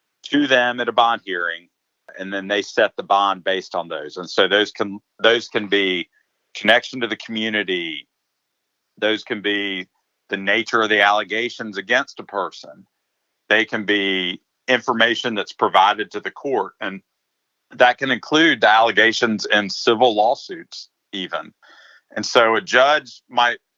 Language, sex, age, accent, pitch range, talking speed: English, male, 50-69, American, 100-120 Hz, 155 wpm